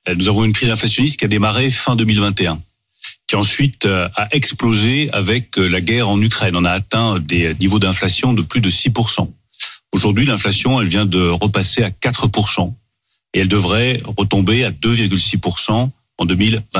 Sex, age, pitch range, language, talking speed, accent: male, 40-59, 95-120 Hz, French, 160 wpm, French